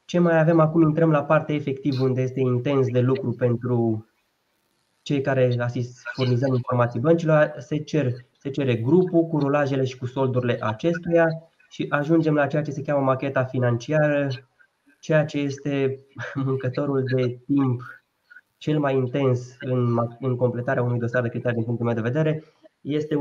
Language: Romanian